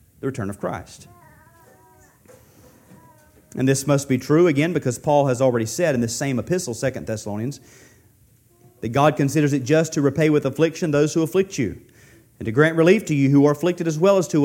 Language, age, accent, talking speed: English, 40-59, American, 195 wpm